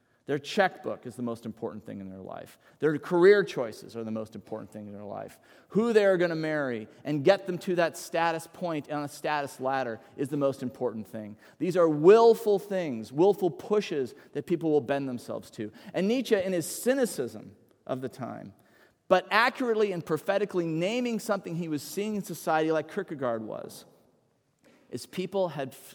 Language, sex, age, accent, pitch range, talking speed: English, male, 30-49, American, 130-185 Hz, 185 wpm